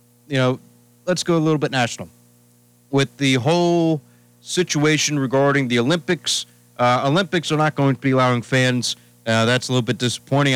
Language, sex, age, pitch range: English, male, 40-59, 115-140 Hz